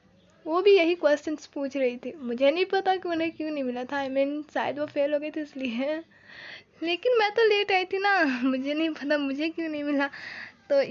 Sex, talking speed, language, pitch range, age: female, 220 wpm, Hindi, 270-325 Hz, 10-29